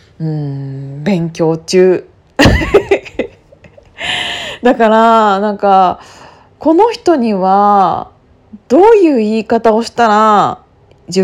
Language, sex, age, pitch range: Japanese, female, 20-39, 180-265 Hz